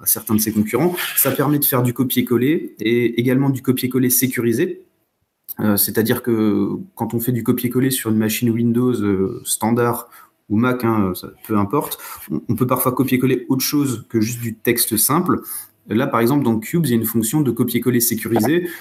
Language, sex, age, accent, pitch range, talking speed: French, male, 30-49, French, 110-130 Hz, 195 wpm